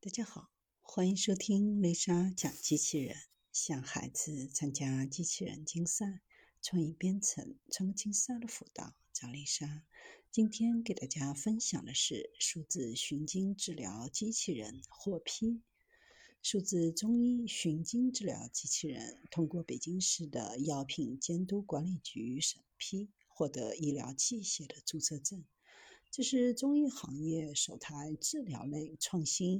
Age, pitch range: 50-69, 150-225 Hz